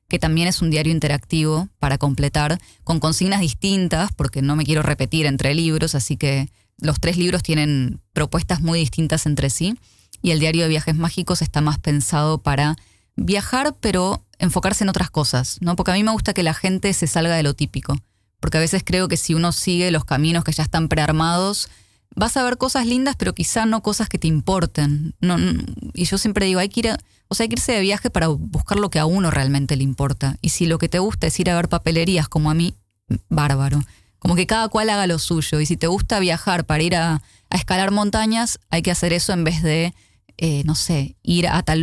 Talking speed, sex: 225 wpm, female